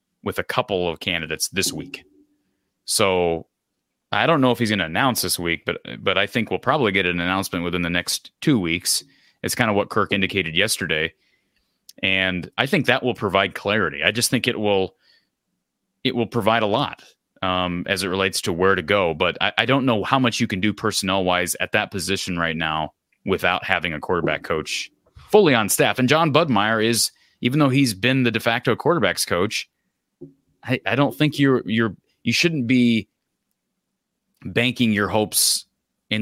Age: 30-49